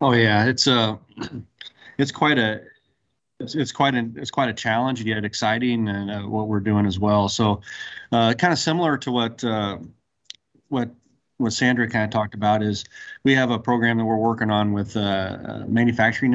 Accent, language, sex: American, English, male